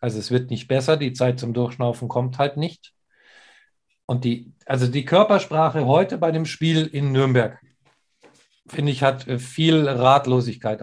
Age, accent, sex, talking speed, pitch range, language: 50-69, German, male, 155 wpm, 120-140 Hz, German